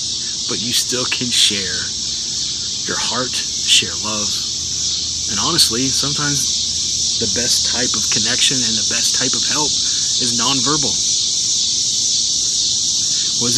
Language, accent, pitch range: English, American, 105-125 Hz